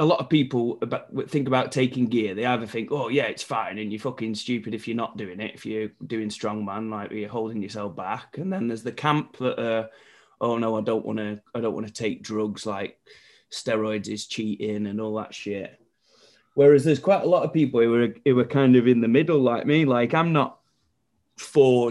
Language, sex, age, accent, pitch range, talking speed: English, male, 20-39, British, 110-125 Hz, 225 wpm